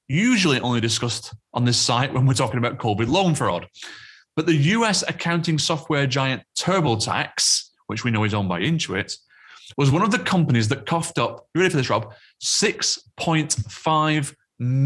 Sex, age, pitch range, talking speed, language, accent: male, 30-49, 115-155 Hz, 160 wpm, English, British